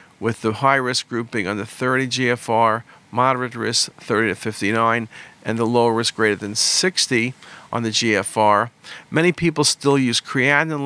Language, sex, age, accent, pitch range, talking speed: English, male, 50-69, American, 115-140 Hz, 170 wpm